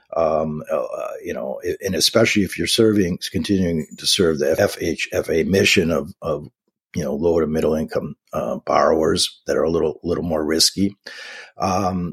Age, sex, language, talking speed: 50-69, male, English, 165 wpm